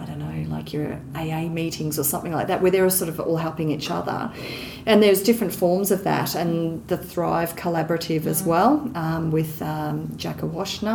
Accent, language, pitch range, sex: Australian, English, 155-180 Hz, female